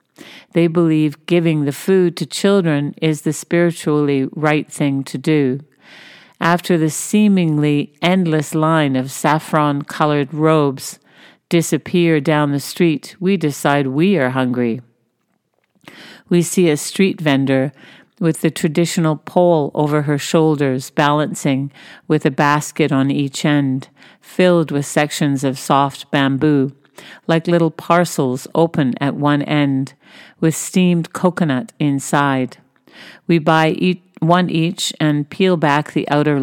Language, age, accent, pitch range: English, 50-69, American, 145-170 Hz